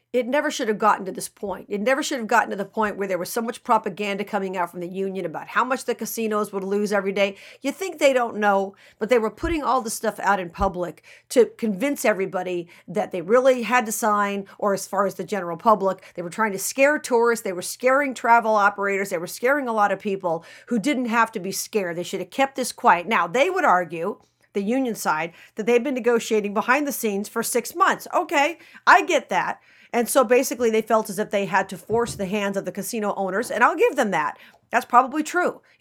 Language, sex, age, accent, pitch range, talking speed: English, female, 50-69, American, 195-235 Hz, 245 wpm